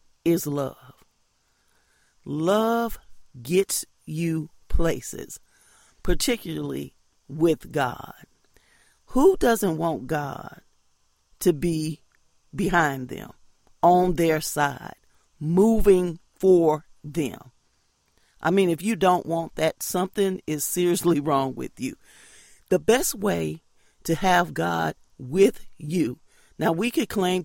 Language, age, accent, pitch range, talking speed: English, 40-59, American, 155-190 Hz, 105 wpm